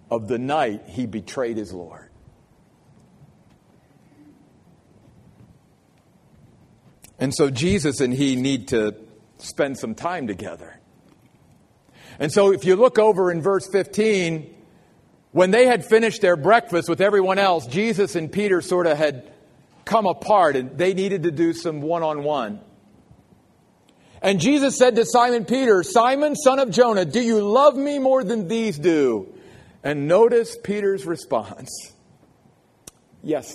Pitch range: 150-230 Hz